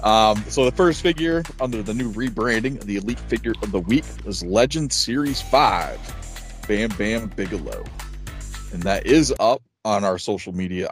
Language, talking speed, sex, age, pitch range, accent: English, 170 wpm, male, 30-49, 95-125 Hz, American